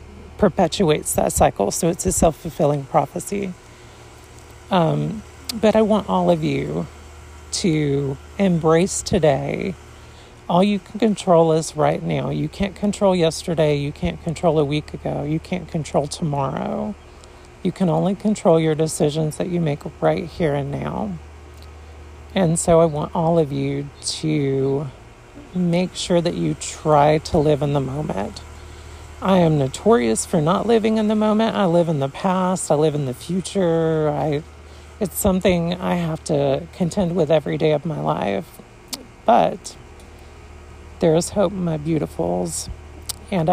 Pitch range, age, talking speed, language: 130-180 Hz, 40-59, 150 wpm, English